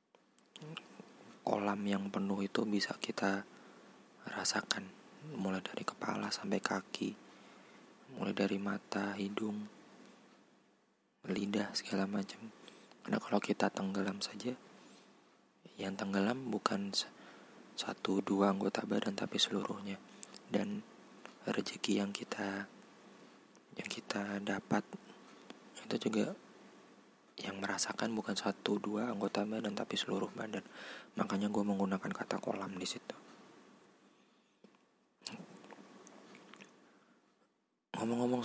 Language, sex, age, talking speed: Indonesian, male, 20-39, 95 wpm